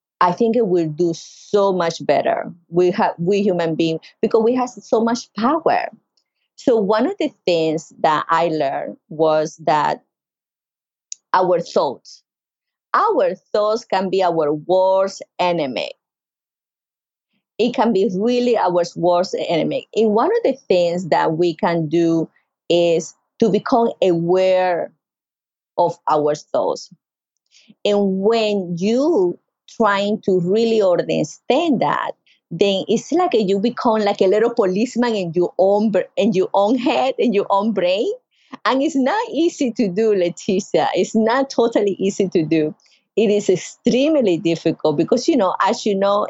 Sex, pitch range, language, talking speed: female, 175-235 Hz, English, 145 wpm